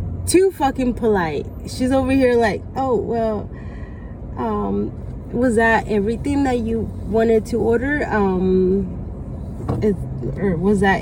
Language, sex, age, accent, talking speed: English, female, 20-39, American, 120 wpm